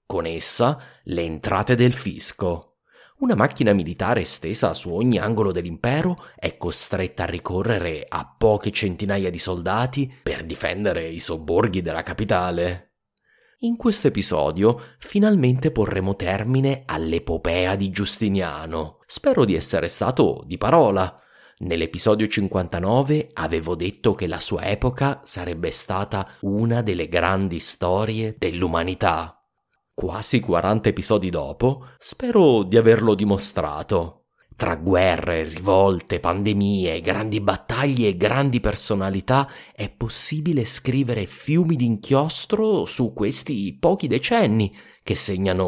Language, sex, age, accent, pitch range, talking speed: English, male, 30-49, Italian, 90-120 Hz, 115 wpm